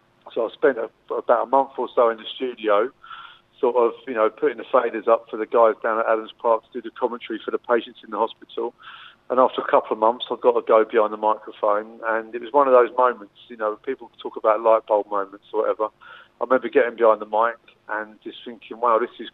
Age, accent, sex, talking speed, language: 40-59, British, male, 240 wpm, English